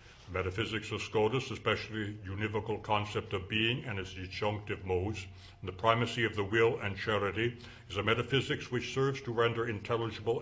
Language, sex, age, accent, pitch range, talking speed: English, male, 60-79, American, 95-115 Hz, 165 wpm